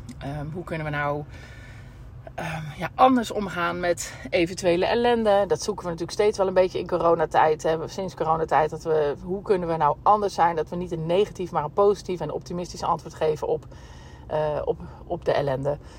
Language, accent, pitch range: Dutch, Dutch, 130-175 Hz